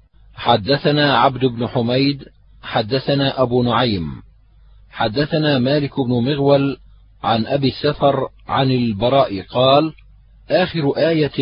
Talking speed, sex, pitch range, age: 100 wpm, male, 110-140 Hz, 40-59